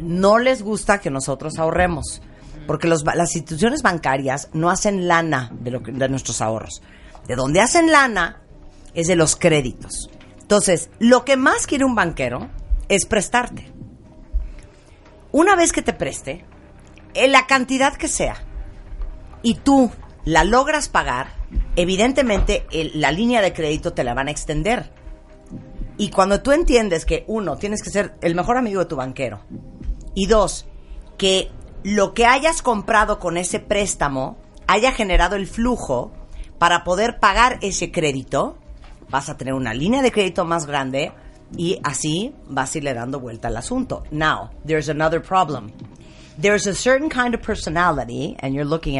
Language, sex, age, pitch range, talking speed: Spanish, female, 40-59, 150-225 Hz, 155 wpm